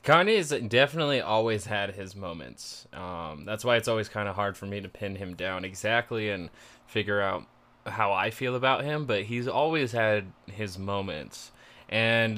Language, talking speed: English, 175 wpm